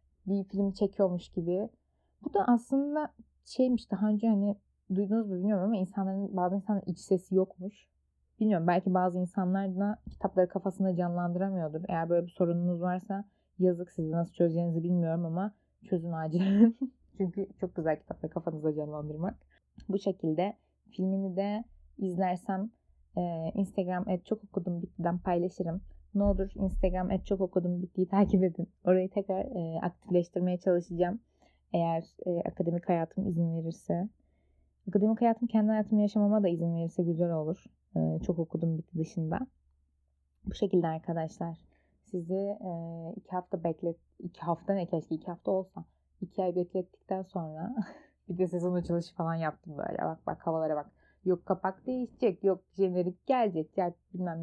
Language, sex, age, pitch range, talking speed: Turkish, female, 20-39, 170-200 Hz, 150 wpm